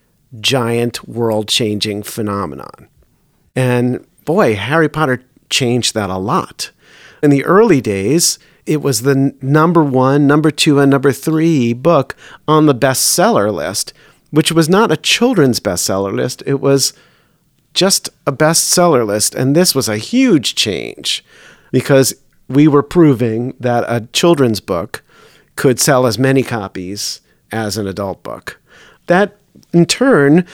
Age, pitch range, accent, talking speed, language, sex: 40-59, 115-155 Hz, American, 135 wpm, English, male